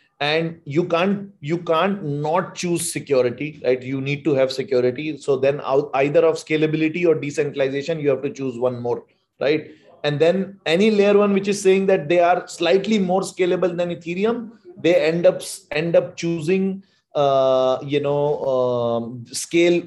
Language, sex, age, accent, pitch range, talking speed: English, male, 30-49, Indian, 130-175 Hz, 170 wpm